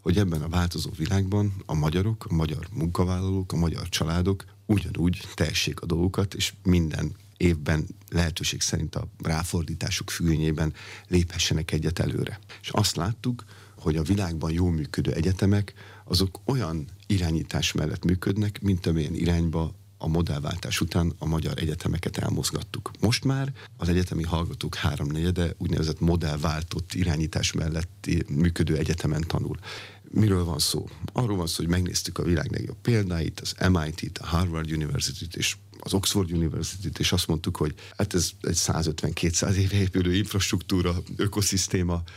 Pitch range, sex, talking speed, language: 85-100 Hz, male, 140 wpm, Hungarian